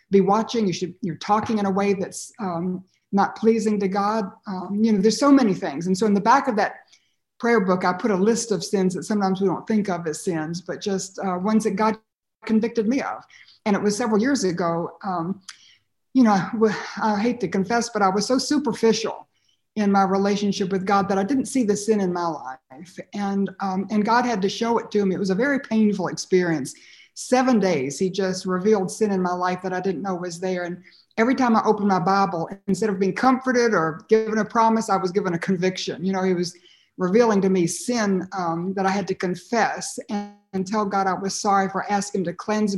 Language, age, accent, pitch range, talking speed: English, 60-79, American, 190-220 Hz, 230 wpm